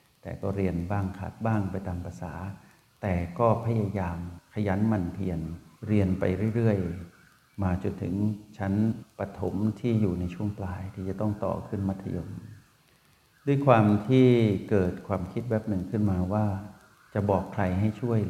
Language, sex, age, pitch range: Thai, male, 60-79, 90-110 Hz